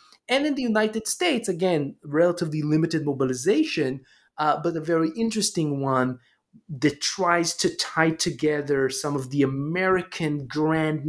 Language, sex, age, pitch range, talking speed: English, male, 30-49, 125-160 Hz, 135 wpm